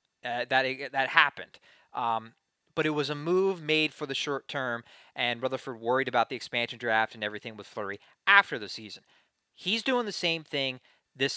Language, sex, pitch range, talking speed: English, male, 120-155 Hz, 185 wpm